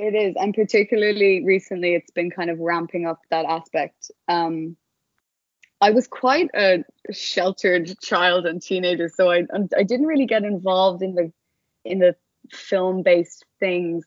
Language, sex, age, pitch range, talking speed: English, female, 20-39, 165-190 Hz, 150 wpm